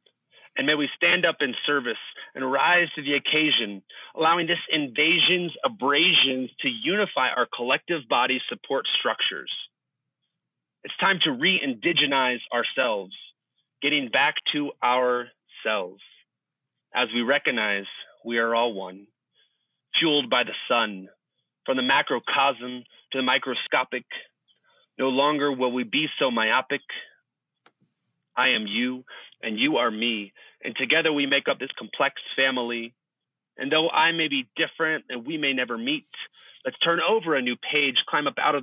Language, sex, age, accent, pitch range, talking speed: English, male, 30-49, American, 125-160 Hz, 145 wpm